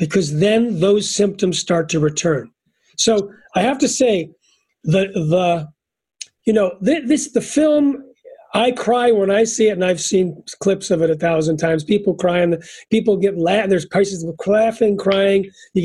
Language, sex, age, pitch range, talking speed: English, male, 40-59, 170-225 Hz, 175 wpm